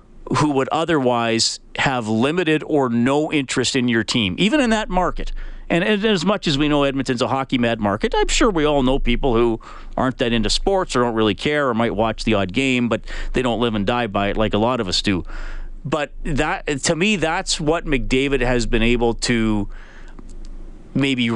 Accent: American